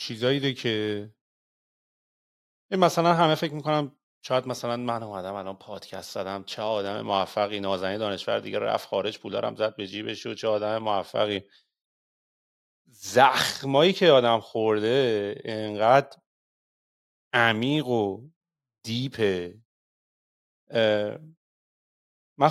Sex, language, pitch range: male, Persian, 110-150 Hz